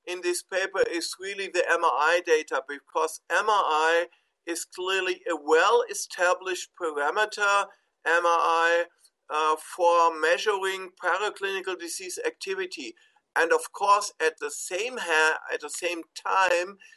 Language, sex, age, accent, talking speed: English, male, 50-69, German, 115 wpm